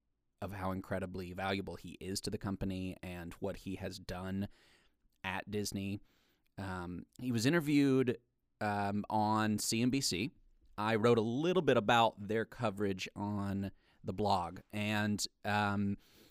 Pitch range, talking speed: 95-120 Hz, 130 wpm